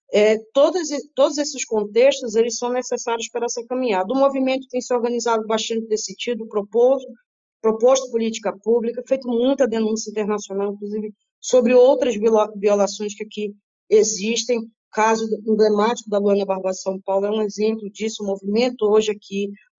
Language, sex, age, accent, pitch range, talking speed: Portuguese, female, 20-39, Brazilian, 205-250 Hz, 160 wpm